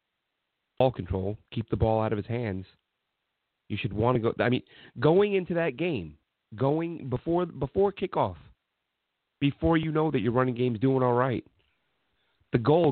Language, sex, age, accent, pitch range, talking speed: English, male, 30-49, American, 110-135 Hz, 165 wpm